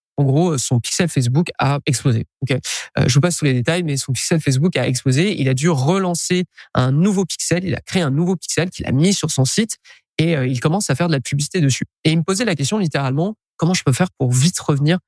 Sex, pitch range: male, 135-175 Hz